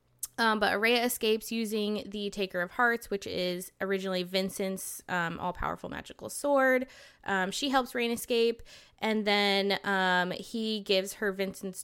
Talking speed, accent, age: 150 wpm, American, 20-39